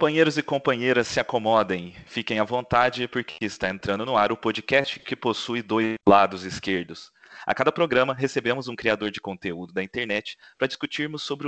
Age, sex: 30-49, male